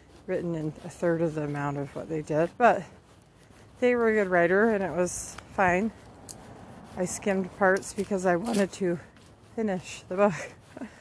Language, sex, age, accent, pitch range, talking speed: English, female, 40-59, American, 155-195 Hz, 170 wpm